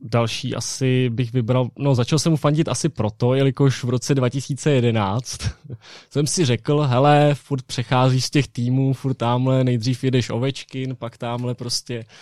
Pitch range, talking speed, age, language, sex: 120-140 Hz, 155 wpm, 20-39, Czech, male